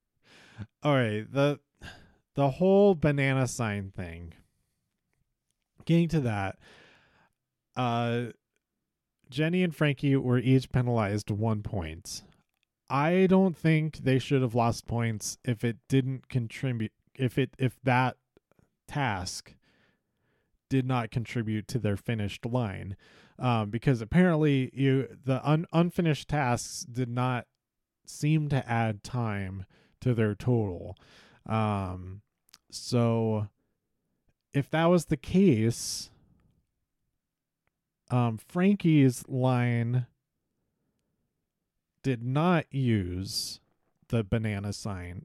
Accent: American